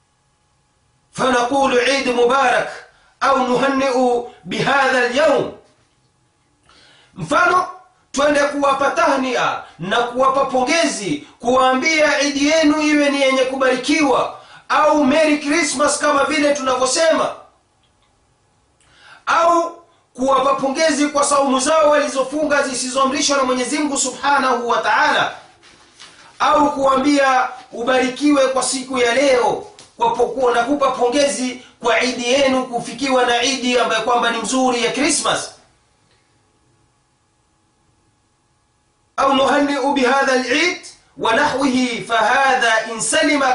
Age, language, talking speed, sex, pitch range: 30-49, Swahili, 100 wpm, male, 250-295 Hz